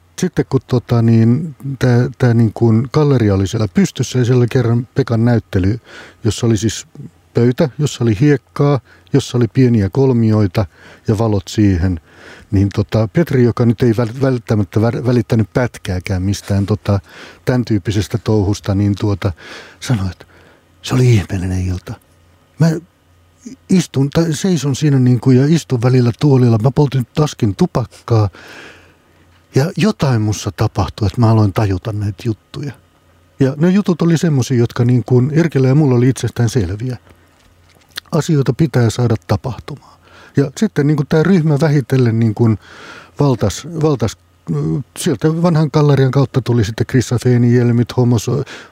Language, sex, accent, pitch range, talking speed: Finnish, male, native, 105-140 Hz, 135 wpm